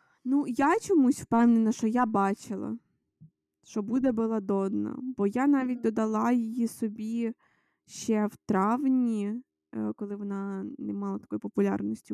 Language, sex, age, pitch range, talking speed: Ukrainian, female, 20-39, 195-255 Hz, 125 wpm